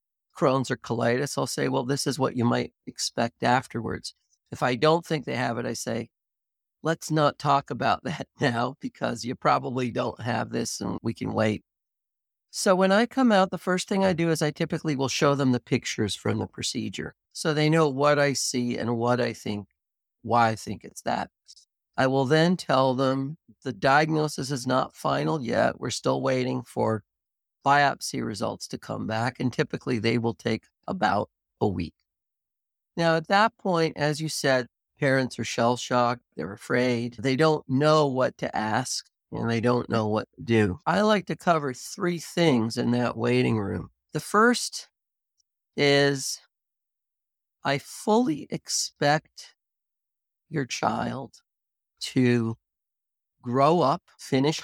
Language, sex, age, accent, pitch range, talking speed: English, male, 50-69, American, 115-155 Hz, 165 wpm